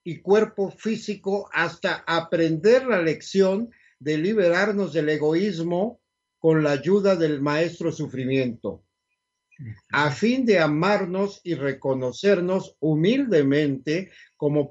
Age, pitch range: 50-69, 150-210 Hz